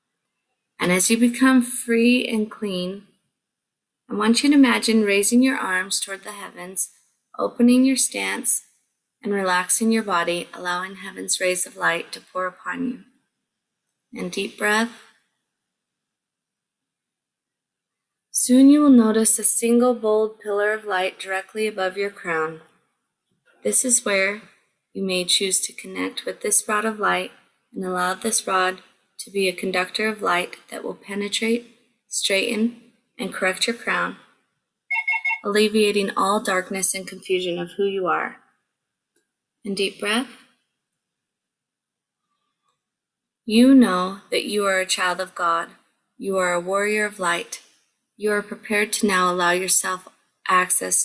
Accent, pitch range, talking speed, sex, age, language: American, 185-230 Hz, 140 wpm, female, 20-39, English